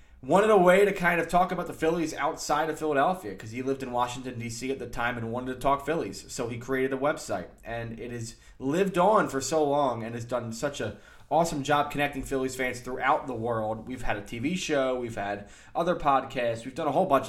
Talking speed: 235 wpm